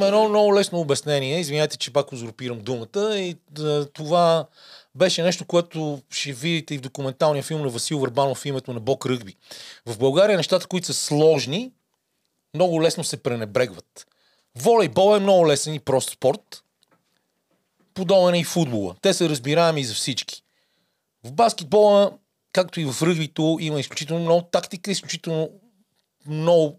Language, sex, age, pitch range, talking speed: Bulgarian, male, 40-59, 150-200 Hz, 150 wpm